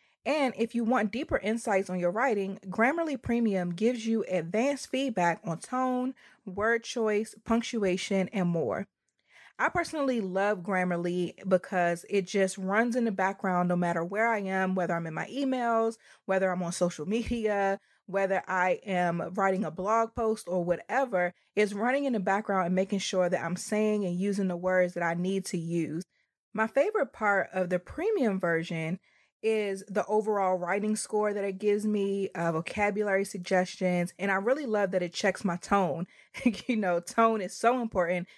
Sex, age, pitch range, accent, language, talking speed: female, 20-39, 185-225 Hz, American, English, 175 wpm